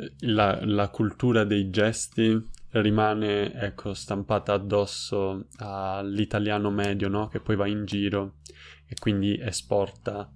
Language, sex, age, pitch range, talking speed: Italian, male, 20-39, 100-110 Hz, 115 wpm